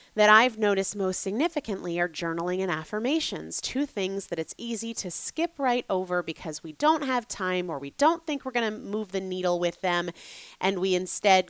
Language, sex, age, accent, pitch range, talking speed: English, female, 30-49, American, 170-235 Hz, 200 wpm